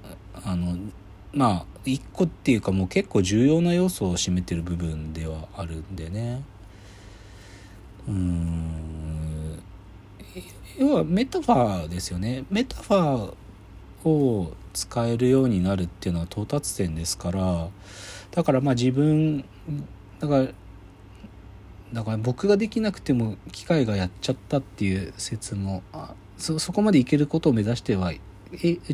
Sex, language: male, Japanese